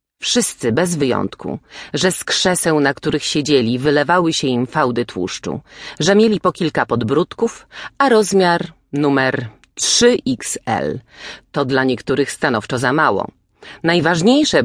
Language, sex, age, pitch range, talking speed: Polish, female, 40-59, 125-170 Hz, 125 wpm